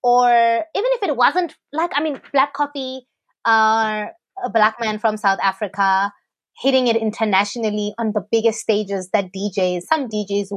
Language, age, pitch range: English, 20-39, 210-290 Hz